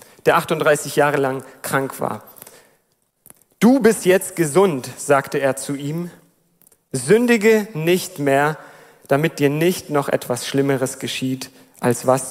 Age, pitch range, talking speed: 40-59, 145-195 Hz, 125 wpm